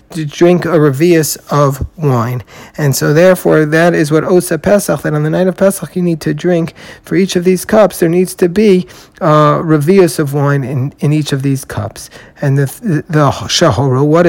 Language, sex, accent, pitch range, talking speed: English, male, American, 145-180 Hz, 210 wpm